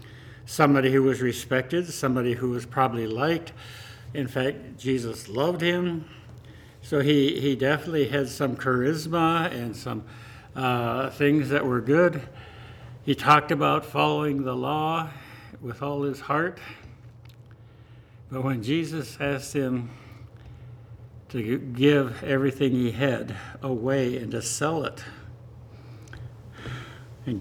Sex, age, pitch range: male, 60-79, 115-150 Hz